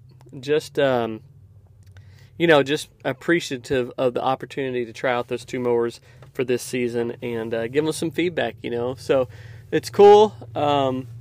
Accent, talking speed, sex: American, 160 wpm, male